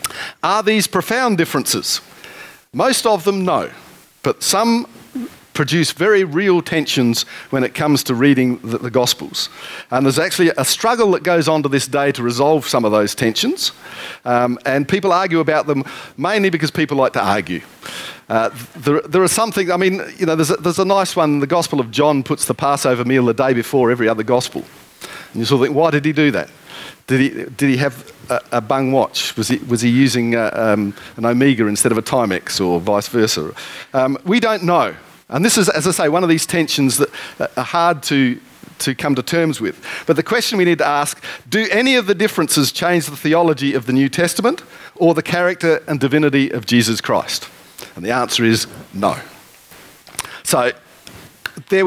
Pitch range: 130-175 Hz